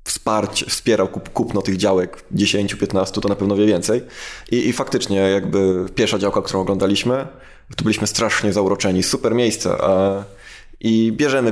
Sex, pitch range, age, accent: male, 105-130 Hz, 20-39, native